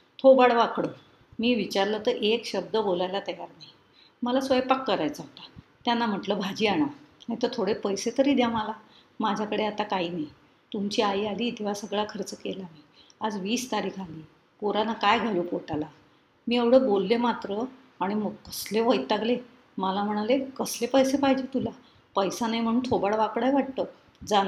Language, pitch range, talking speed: Marathi, 195-250 Hz, 165 wpm